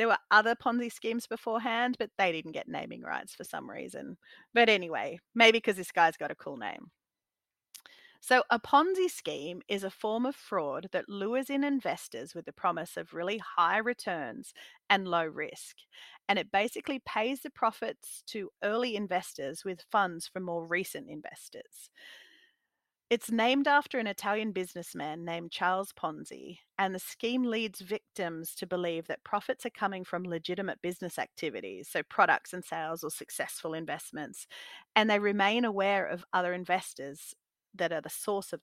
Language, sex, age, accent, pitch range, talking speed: English, female, 30-49, Australian, 180-235 Hz, 165 wpm